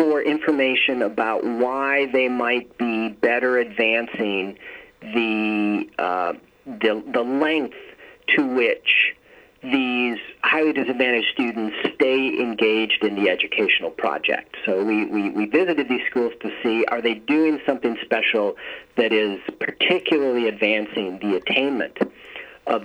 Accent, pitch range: American, 115-190 Hz